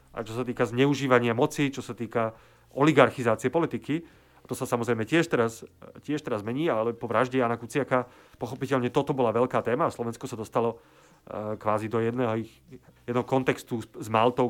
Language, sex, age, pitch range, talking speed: Slovak, male, 30-49, 115-130 Hz, 165 wpm